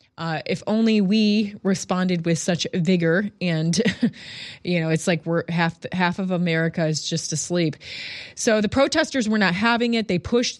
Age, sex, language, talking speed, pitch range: 20-39, female, English, 170 wpm, 175-235 Hz